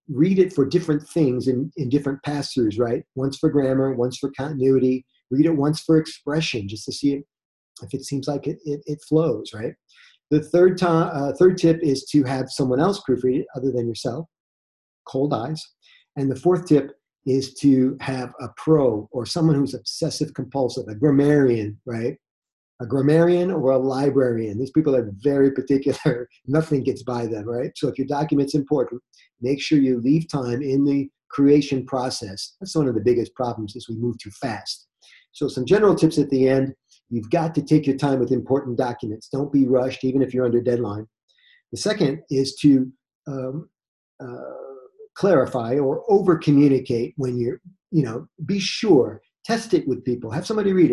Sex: male